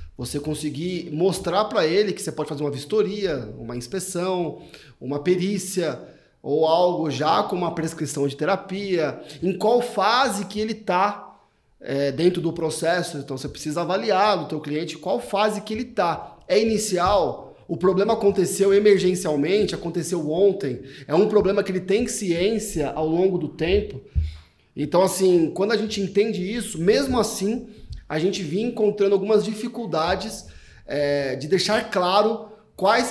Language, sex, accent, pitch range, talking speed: Portuguese, male, Brazilian, 150-205 Hz, 150 wpm